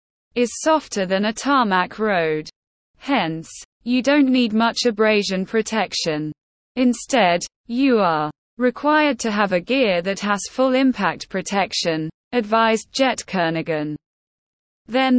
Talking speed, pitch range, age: 120 wpm, 180-245 Hz, 20-39